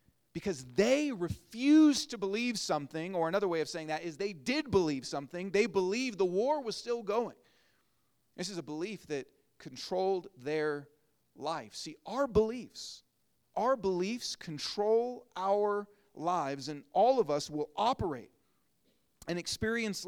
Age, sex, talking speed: 40-59, male, 145 wpm